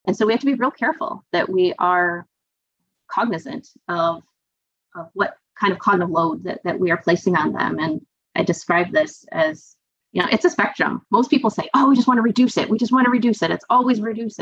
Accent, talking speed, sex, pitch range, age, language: American, 230 wpm, female, 175-240 Hz, 30-49, English